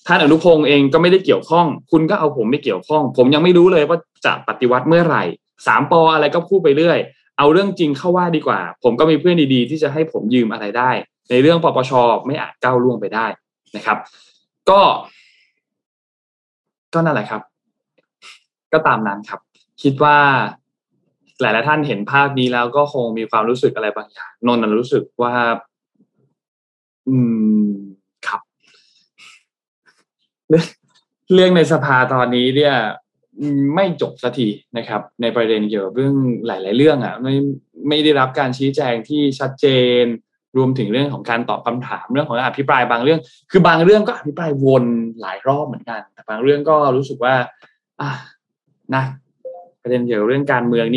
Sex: male